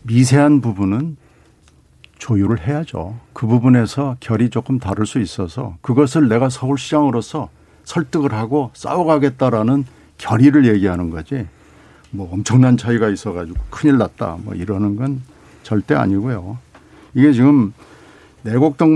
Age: 60-79